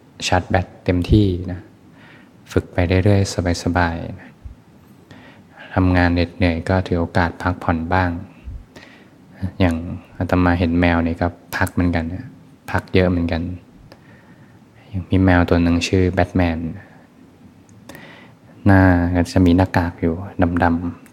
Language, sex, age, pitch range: Thai, male, 20-39, 85-95 Hz